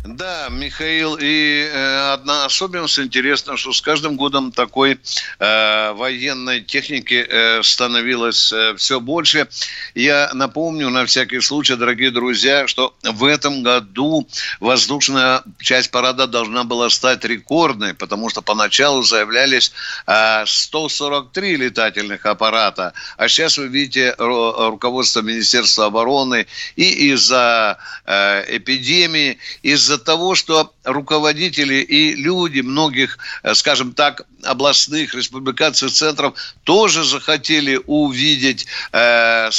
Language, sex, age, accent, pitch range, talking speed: Russian, male, 60-79, native, 125-150 Hz, 110 wpm